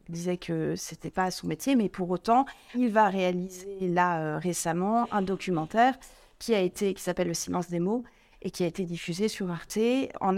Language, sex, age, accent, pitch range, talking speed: French, female, 30-49, French, 180-220 Hz, 215 wpm